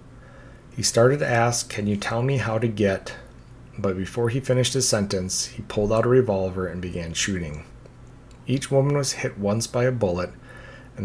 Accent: American